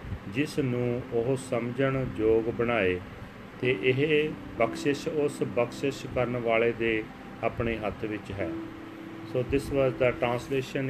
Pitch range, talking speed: 110-135 Hz, 125 wpm